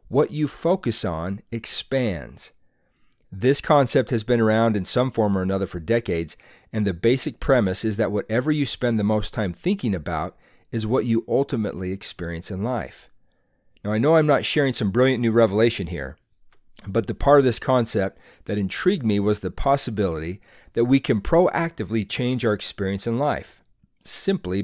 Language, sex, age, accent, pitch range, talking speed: English, male, 40-59, American, 100-130 Hz, 175 wpm